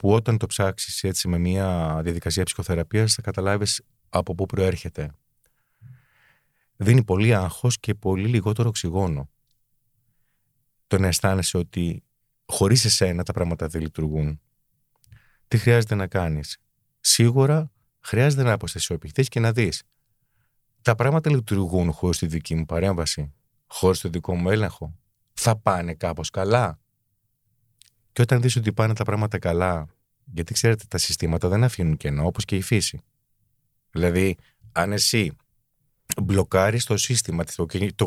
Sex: male